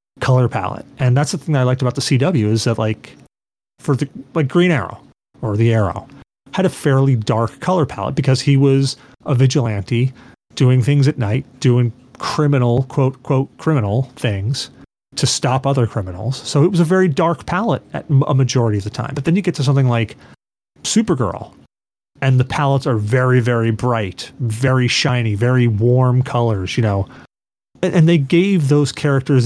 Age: 30-49